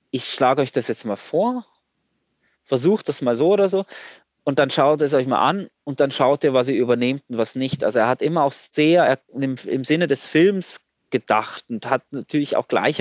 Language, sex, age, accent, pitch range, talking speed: German, male, 20-39, German, 125-145 Hz, 215 wpm